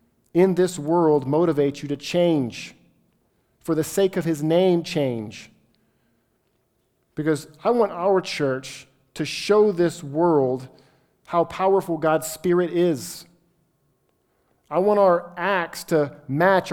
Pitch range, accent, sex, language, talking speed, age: 135-175 Hz, American, male, English, 120 wpm, 50-69